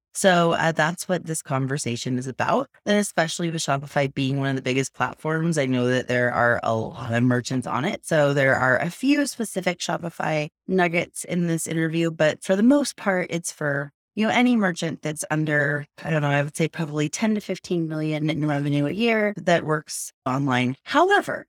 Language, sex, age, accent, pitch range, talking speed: English, female, 20-39, American, 145-195 Hz, 200 wpm